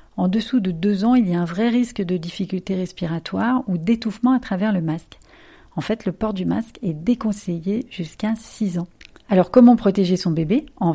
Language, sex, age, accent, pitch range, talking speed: French, female, 40-59, French, 175-220 Hz, 205 wpm